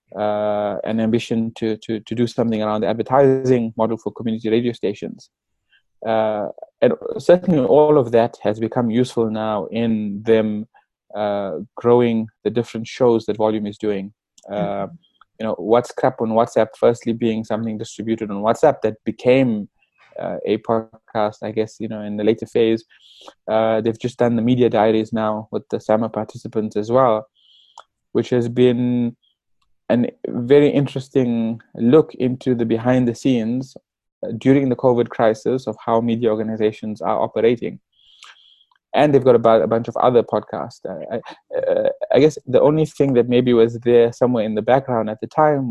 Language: English